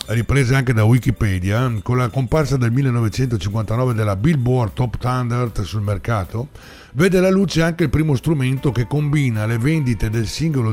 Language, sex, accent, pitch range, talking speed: Italian, male, native, 120-160 Hz, 155 wpm